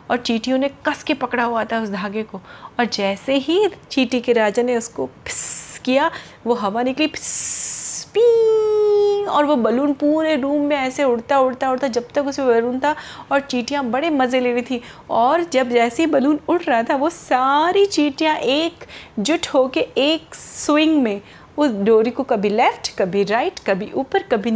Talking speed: 180 wpm